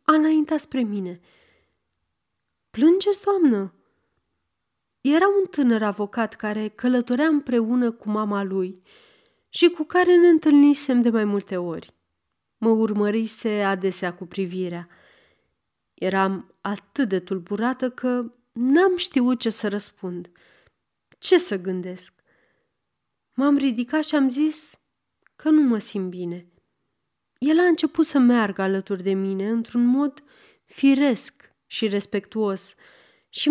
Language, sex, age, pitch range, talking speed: Romanian, female, 30-49, 190-270 Hz, 120 wpm